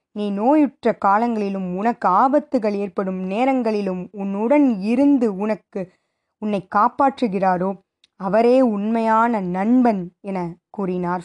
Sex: female